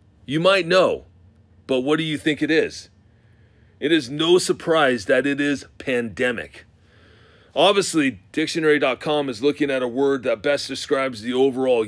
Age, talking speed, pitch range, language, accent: 40-59, 150 wpm, 125-155 Hz, English, American